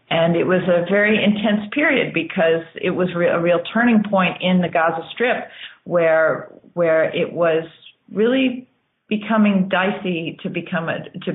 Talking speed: 155 wpm